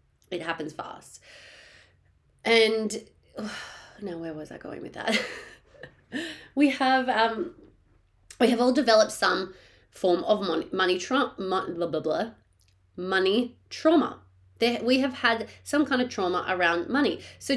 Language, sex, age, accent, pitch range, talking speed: English, female, 30-49, Australian, 180-240 Hz, 135 wpm